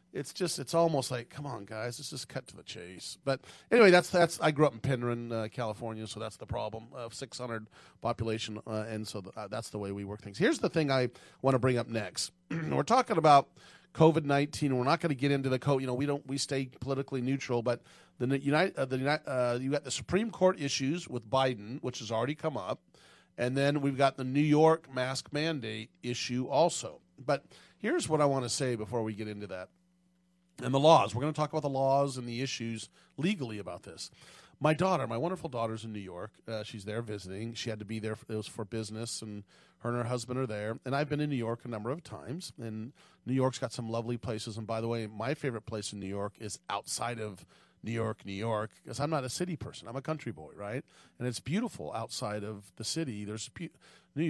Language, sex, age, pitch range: English, male, 40-59, 110-145 Hz